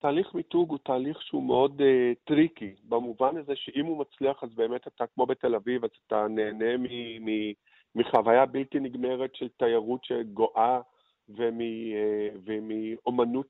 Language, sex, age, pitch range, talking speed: Hebrew, male, 40-59, 115-145 Hz, 140 wpm